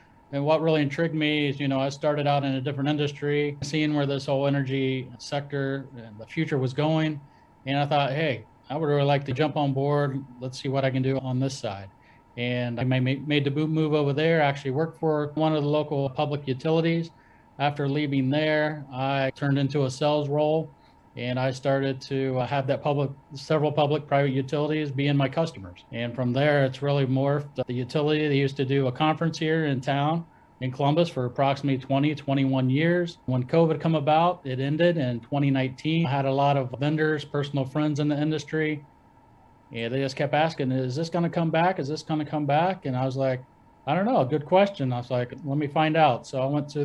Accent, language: American, English